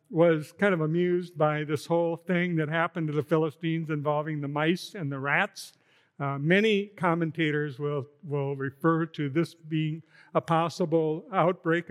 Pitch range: 150-180 Hz